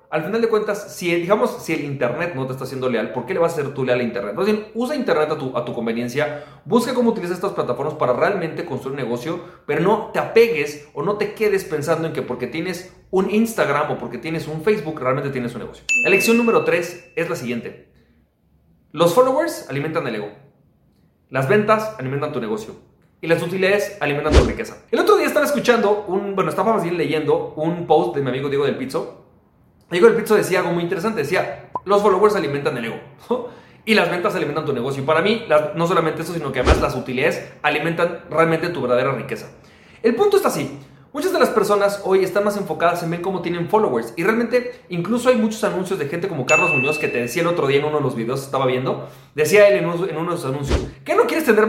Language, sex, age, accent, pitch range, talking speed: Spanish, male, 30-49, Mexican, 145-215 Hz, 230 wpm